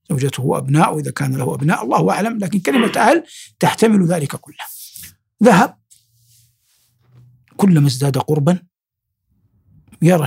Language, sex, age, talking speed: Arabic, male, 60-79, 110 wpm